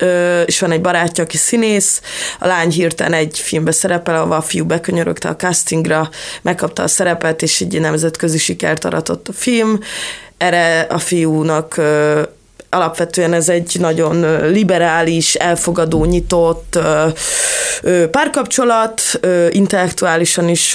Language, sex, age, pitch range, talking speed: Hungarian, female, 20-39, 165-190 Hz, 120 wpm